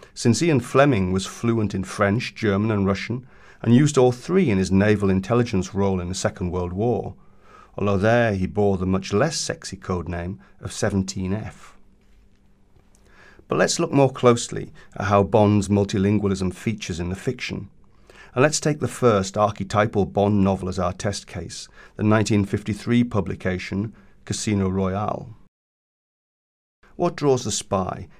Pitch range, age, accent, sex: 95-110 Hz, 40-59, British, male